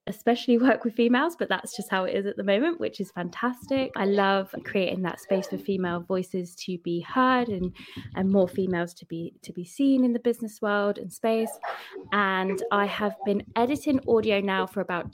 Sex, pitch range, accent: female, 180-225 Hz, British